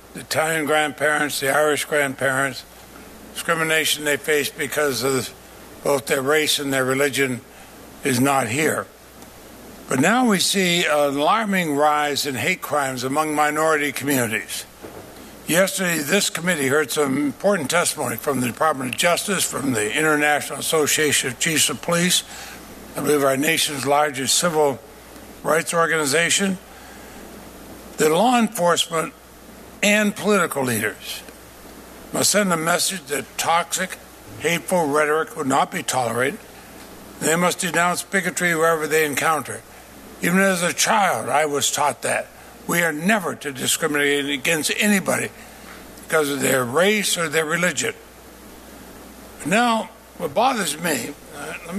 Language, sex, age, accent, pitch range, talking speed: English, male, 60-79, American, 140-175 Hz, 130 wpm